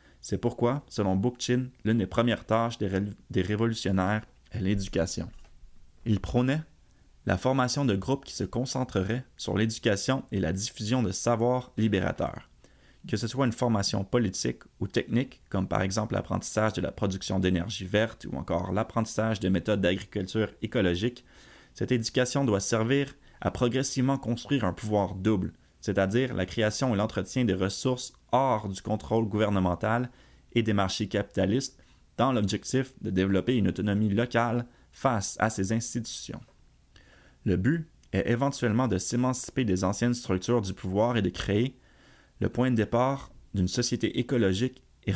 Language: English